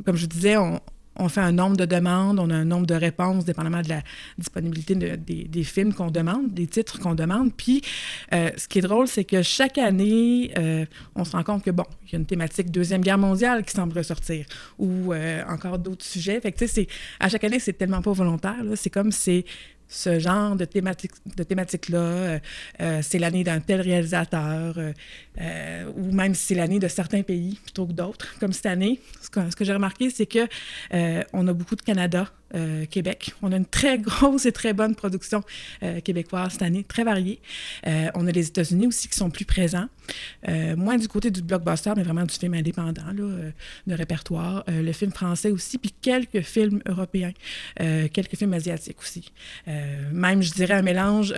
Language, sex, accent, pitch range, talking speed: French, female, Canadian, 170-205 Hz, 210 wpm